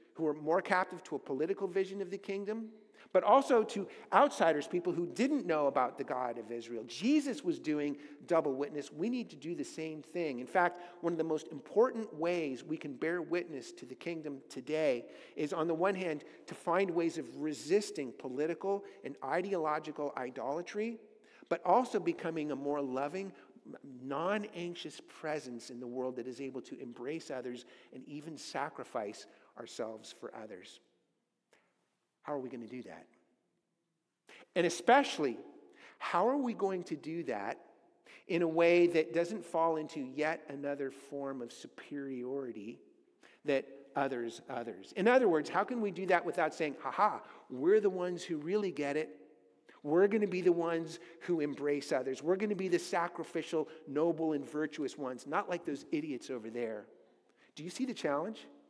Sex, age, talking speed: male, 50-69, 170 wpm